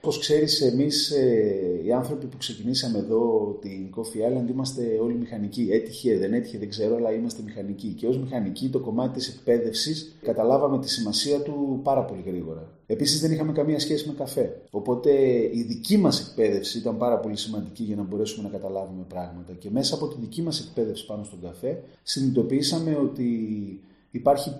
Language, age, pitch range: Greek, 30-49, 100-130 Hz